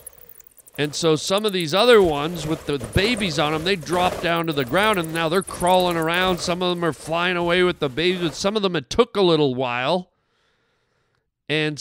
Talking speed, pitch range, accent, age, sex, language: 210 wpm, 135-180 Hz, American, 40-59, male, English